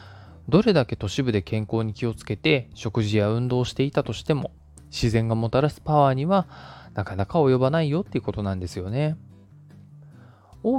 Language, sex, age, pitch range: Japanese, male, 20-39, 105-150 Hz